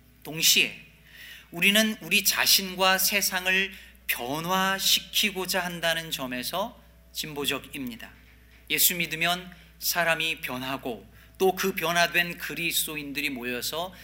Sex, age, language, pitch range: male, 40-59, Korean, 125-185 Hz